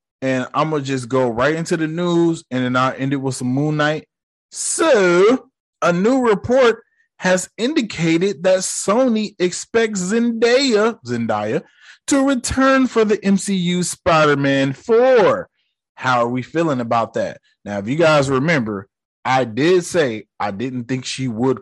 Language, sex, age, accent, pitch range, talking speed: English, male, 20-39, American, 125-185 Hz, 155 wpm